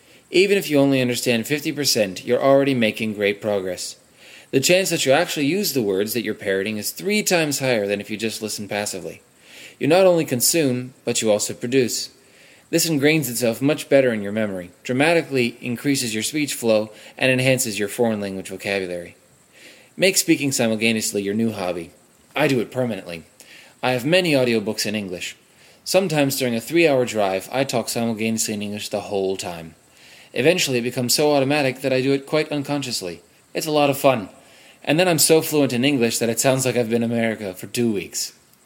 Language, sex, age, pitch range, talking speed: English, male, 20-39, 110-140 Hz, 190 wpm